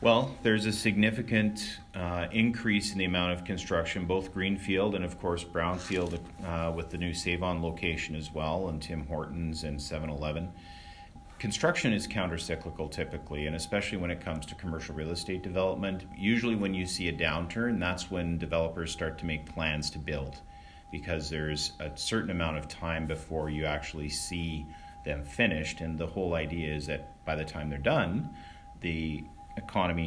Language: English